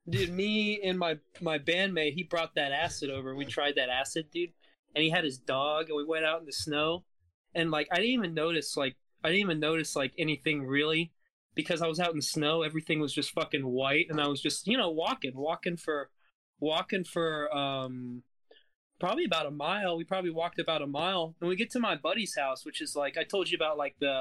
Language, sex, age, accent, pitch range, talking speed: English, male, 20-39, American, 150-185 Hz, 230 wpm